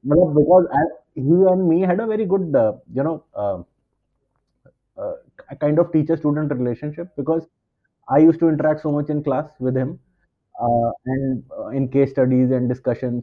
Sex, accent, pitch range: male, Indian, 125-155 Hz